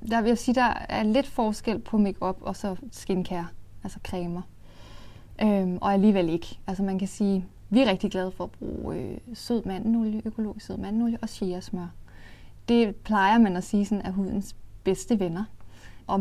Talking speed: 175 wpm